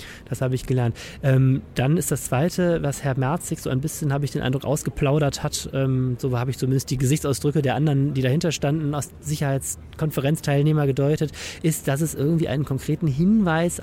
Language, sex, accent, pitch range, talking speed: German, male, German, 130-150 Hz, 185 wpm